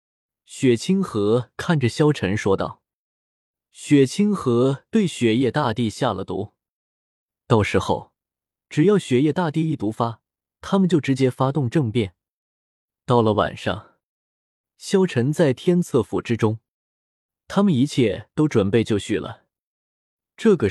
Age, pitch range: 20-39, 110-155 Hz